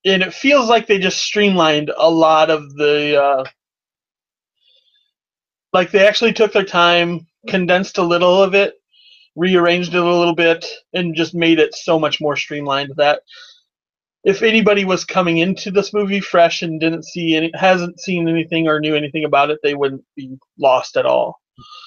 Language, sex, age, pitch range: English, male, 30-49, 165-225 Hz